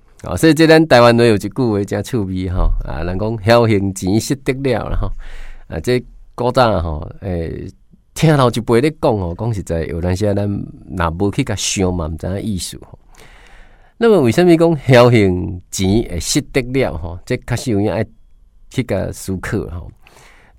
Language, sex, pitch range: Chinese, male, 95-135 Hz